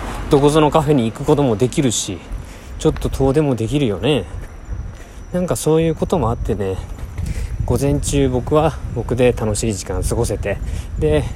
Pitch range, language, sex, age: 95-130 Hz, Japanese, male, 20-39